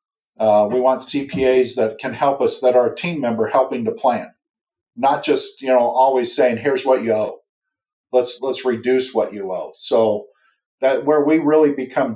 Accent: American